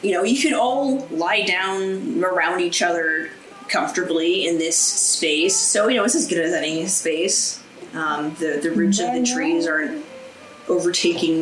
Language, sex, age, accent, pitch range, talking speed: English, female, 20-39, American, 175-250 Hz, 170 wpm